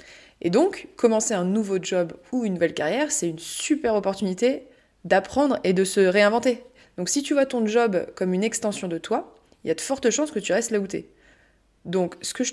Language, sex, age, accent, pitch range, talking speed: French, female, 20-39, French, 175-230 Hz, 220 wpm